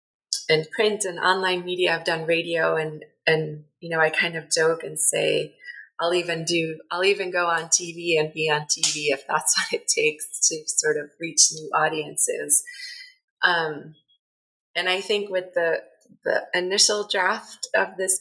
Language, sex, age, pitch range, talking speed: English, female, 20-39, 160-205 Hz, 170 wpm